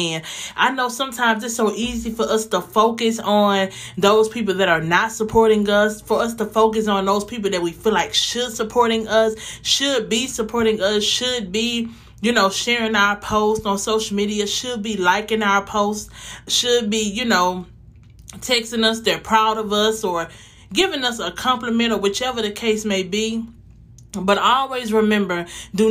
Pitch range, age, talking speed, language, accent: 195-225 Hz, 30-49, 180 wpm, English, American